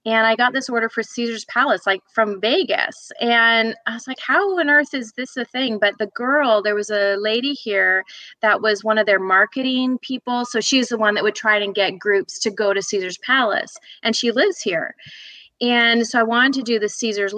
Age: 30-49